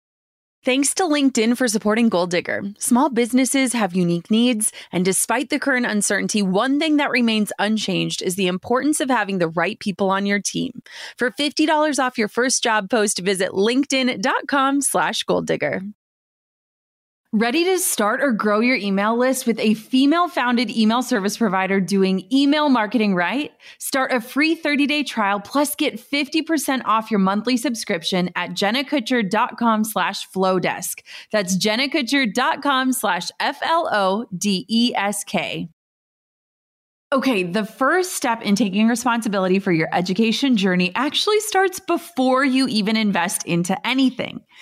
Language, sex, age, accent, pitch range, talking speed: English, female, 20-39, American, 205-270 Hz, 135 wpm